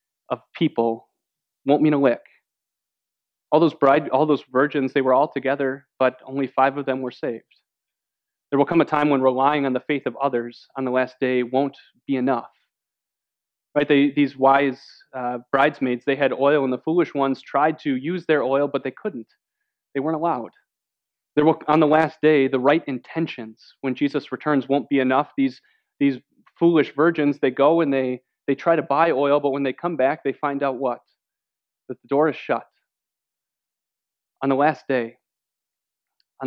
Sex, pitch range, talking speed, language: male, 130-150 Hz, 185 wpm, English